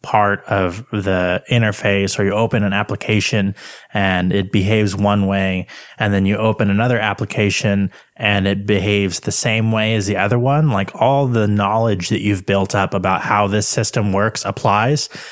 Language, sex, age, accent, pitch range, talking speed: English, male, 20-39, American, 100-110 Hz, 170 wpm